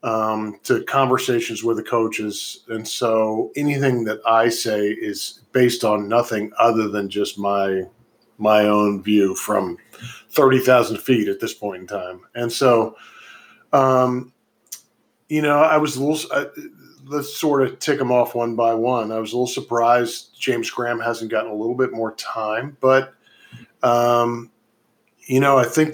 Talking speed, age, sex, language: 160 wpm, 40-59, male, English